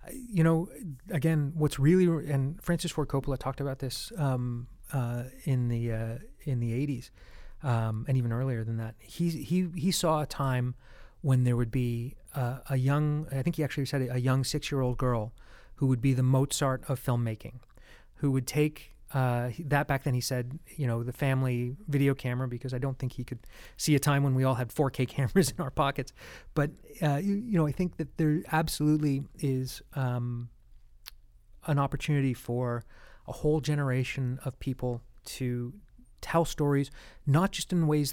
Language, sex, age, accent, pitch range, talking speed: English, male, 30-49, American, 120-145 Hz, 180 wpm